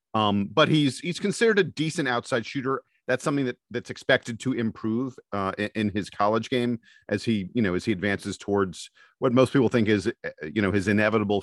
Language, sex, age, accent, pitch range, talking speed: English, male, 40-59, American, 110-130 Hz, 205 wpm